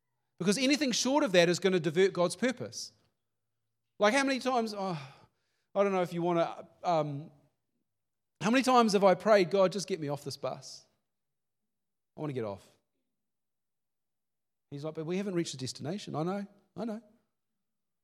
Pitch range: 115-170 Hz